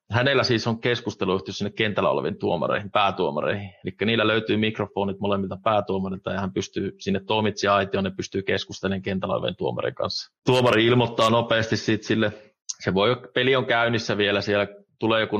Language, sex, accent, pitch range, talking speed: Finnish, male, native, 100-115 Hz, 160 wpm